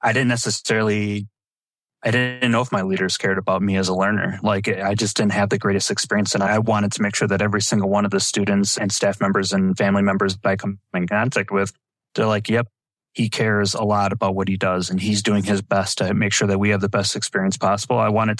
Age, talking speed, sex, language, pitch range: 20-39, 250 wpm, male, English, 100-110 Hz